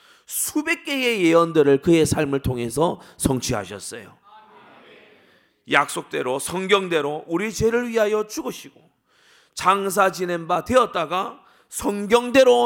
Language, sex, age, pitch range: Korean, male, 30-49, 170-215 Hz